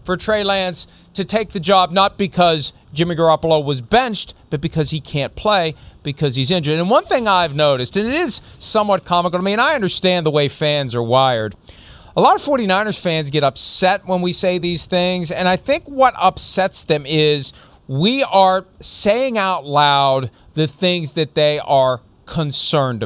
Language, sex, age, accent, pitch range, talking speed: English, male, 40-59, American, 160-215 Hz, 185 wpm